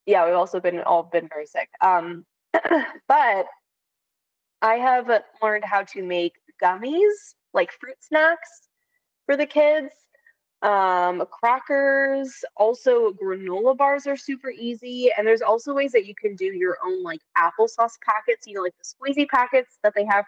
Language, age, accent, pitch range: English, 20-39, American, 190-275 Hz